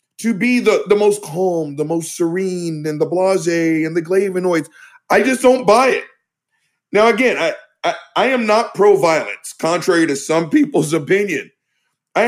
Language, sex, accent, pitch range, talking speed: English, male, American, 165-225 Hz, 165 wpm